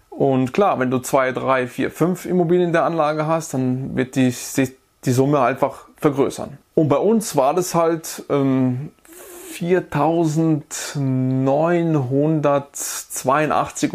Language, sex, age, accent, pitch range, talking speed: German, male, 20-39, German, 135-185 Hz, 125 wpm